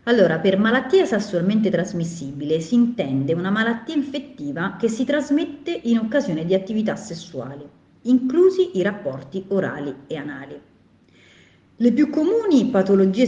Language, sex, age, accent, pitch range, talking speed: Italian, female, 40-59, native, 165-240 Hz, 125 wpm